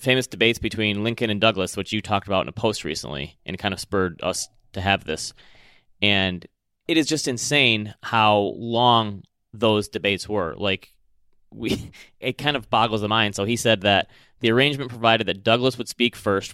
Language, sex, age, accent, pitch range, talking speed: English, male, 30-49, American, 100-120 Hz, 190 wpm